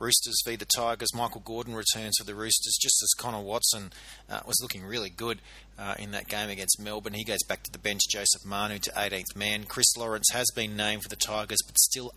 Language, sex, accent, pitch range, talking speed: English, male, Australian, 95-115 Hz, 225 wpm